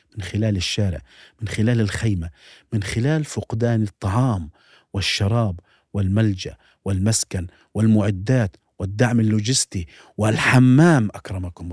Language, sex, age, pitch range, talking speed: Arabic, male, 40-59, 100-145 Hz, 90 wpm